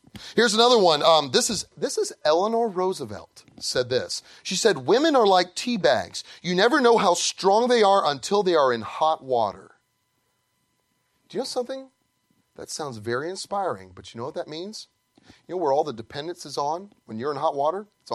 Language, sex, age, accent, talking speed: English, male, 30-49, American, 200 wpm